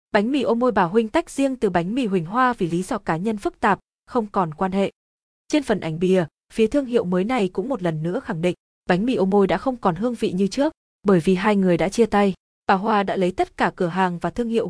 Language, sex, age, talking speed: Vietnamese, female, 20-39, 280 wpm